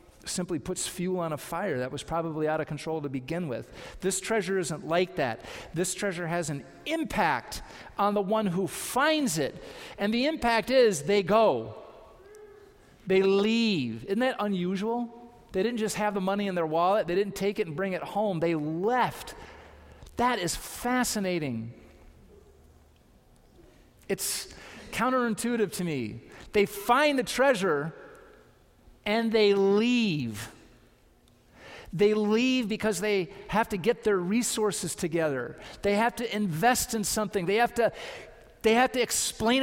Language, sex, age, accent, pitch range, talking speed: English, male, 40-59, American, 175-230 Hz, 150 wpm